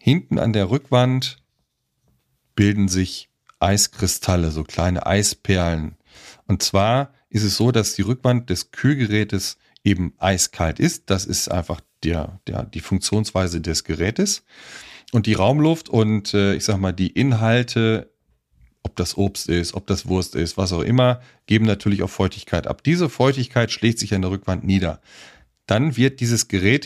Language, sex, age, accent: German, male, 40-59, German